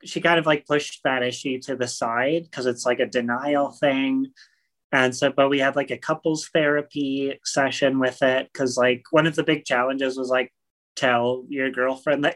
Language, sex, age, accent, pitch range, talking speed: English, male, 30-49, American, 125-155 Hz, 200 wpm